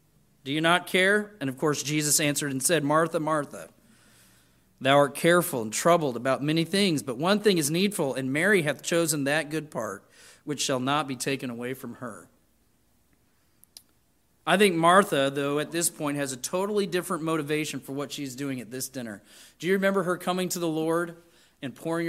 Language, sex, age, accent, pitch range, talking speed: English, male, 40-59, American, 145-195 Hz, 190 wpm